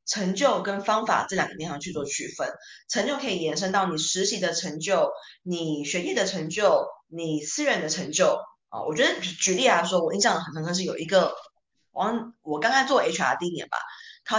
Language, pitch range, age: Chinese, 160-235 Hz, 20-39